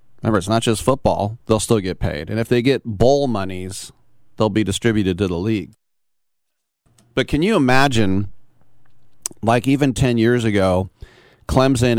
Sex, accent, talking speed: male, American, 155 wpm